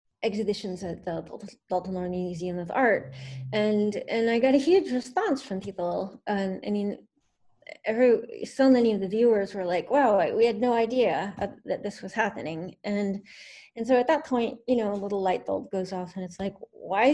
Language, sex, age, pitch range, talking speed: English, female, 30-49, 195-245 Hz, 190 wpm